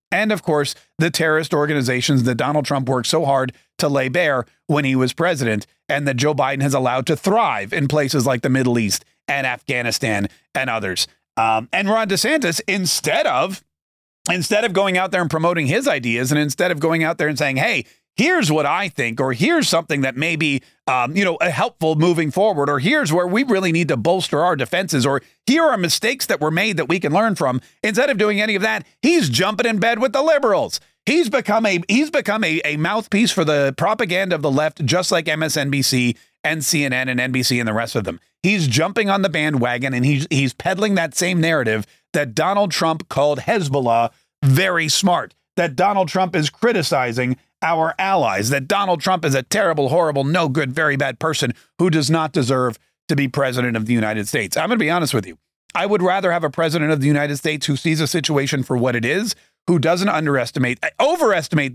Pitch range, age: 135-185 Hz, 40-59